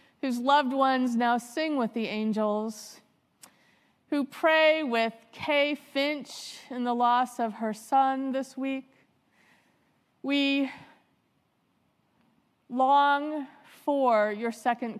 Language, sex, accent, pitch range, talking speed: English, female, American, 220-270 Hz, 105 wpm